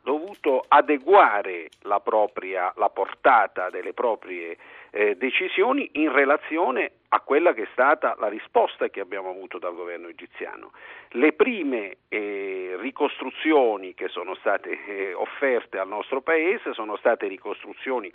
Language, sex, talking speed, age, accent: Italian, male, 120 wpm, 50-69, native